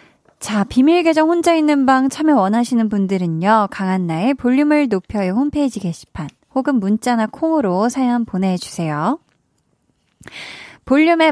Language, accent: Korean, native